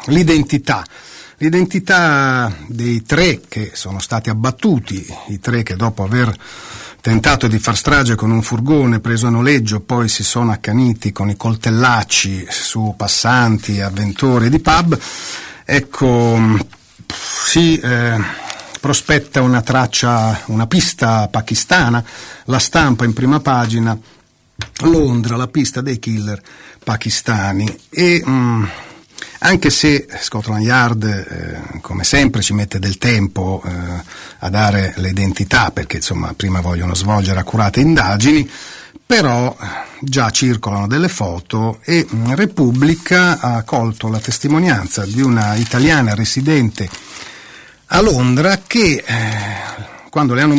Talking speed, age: 120 wpm, 40-59